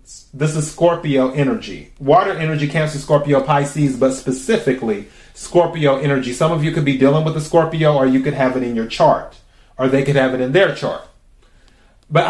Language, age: English, 30-49